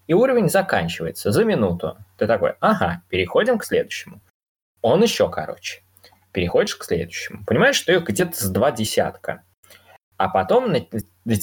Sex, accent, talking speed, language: male, native, 140 wpm, Russian